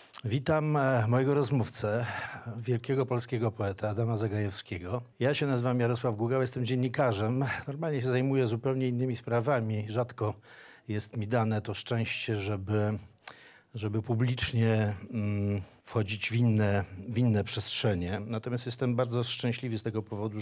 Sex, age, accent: male, 50-69, Polish